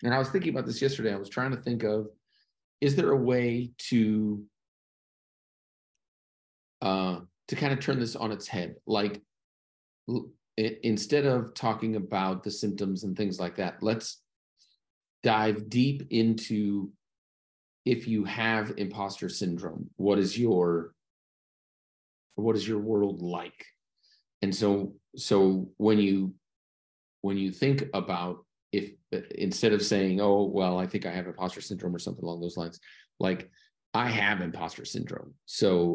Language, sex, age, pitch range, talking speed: English, male, 40-59, 85-110 Hz, 145 wpm